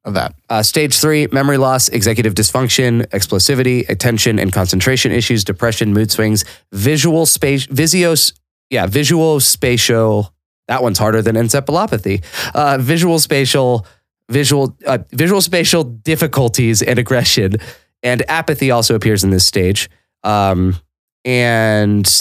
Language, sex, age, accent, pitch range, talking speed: English, male, 20-39, American, 100-130 Hz, 125 wpm